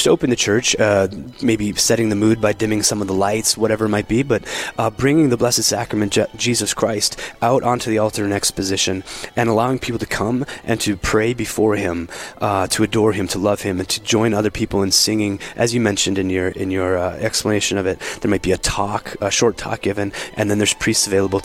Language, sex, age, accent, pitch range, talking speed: English, male, 20-39, American, 105-130 Hz, 225 wpm